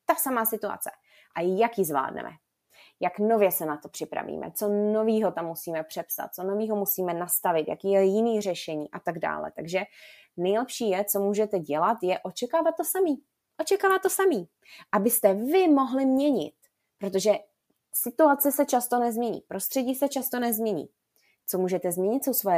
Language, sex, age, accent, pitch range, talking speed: Czech, female, 20-39, native, 185-270 Hz, 160 wpm